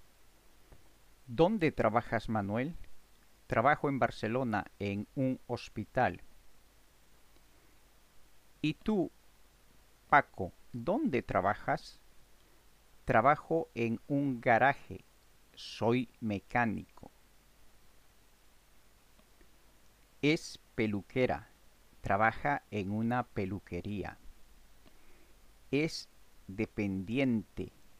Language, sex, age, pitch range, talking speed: Spanish, male, 50-69, 105-130 Hz, 60 wpm